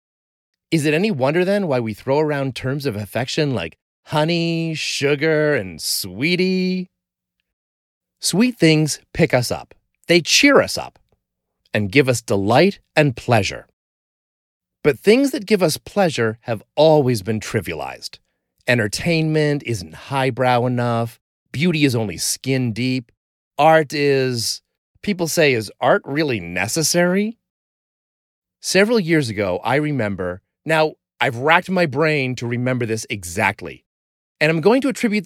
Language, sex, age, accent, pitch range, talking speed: English, male, 30-49, American, 110-160 Hz, 135 wpm